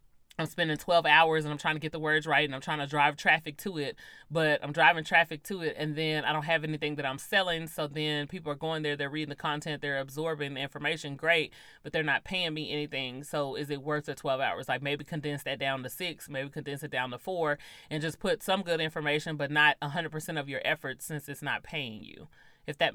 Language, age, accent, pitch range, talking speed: English, 30-49, American, 140-160 Hz, 250 wpm